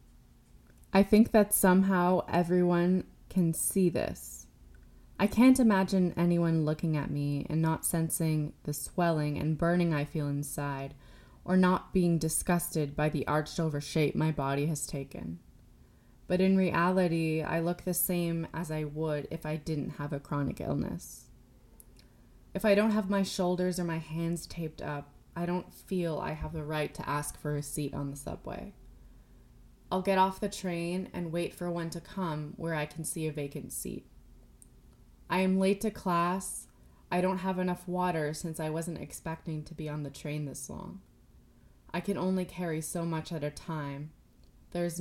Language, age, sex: English, 20-39, female